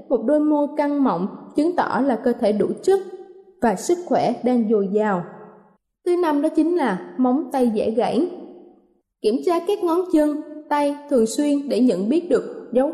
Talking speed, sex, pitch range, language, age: 185 wpm, female, 230-300 Hz, Vietnamese, 20-39